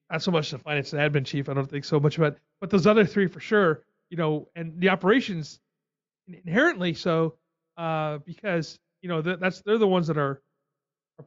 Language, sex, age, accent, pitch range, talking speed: English, male, 30-49, American, 140-165 Hz, 210 wpm